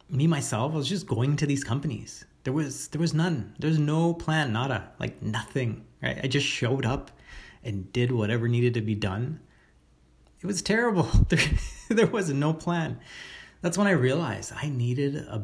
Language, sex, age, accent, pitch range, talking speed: English, male, 30-49, American, 105-140 Hz, 185 wpm